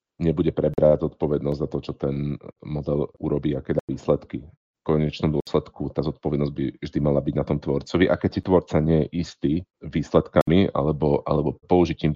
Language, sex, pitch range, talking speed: Slovak, male, 75-85 Hz, 170 wpm